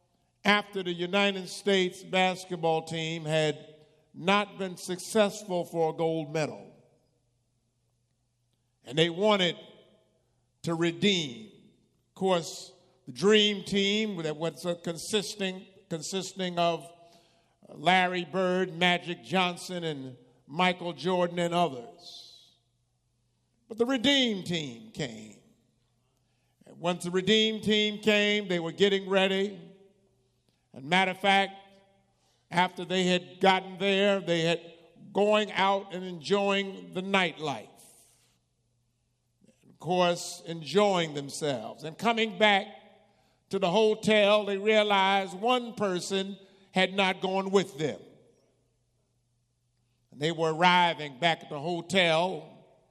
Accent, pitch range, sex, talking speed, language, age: American, 155-195 Hz, male, 110 wpm, English, 50-69